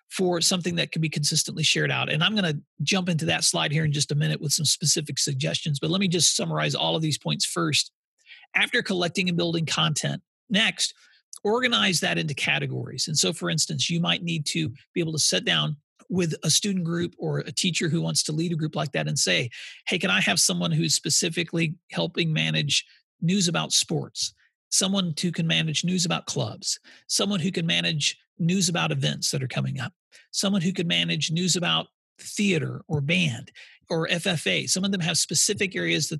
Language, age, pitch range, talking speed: English, 40-59, 150-180 Hz, 205 wpm